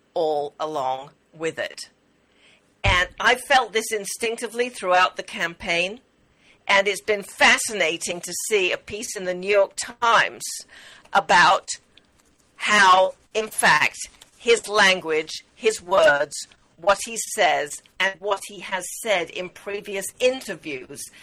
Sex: female